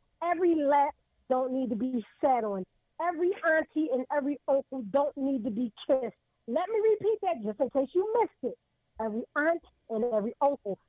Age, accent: 40-59, American